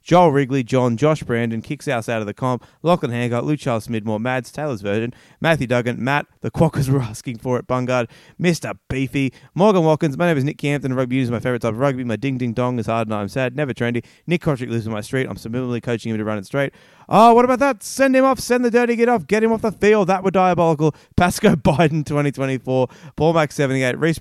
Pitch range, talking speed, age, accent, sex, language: 110-150 Hz, 235 wpm, 20-39, Australian, male, English